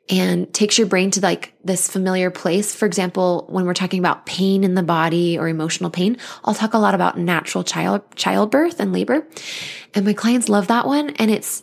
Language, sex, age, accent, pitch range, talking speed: English, female, 20-39, American, 180-215 Hz, 205 wpm